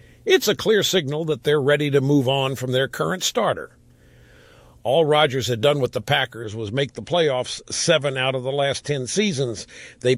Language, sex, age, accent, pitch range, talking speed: English, male, 50-69, American, 130-165 Hz, 195 wpm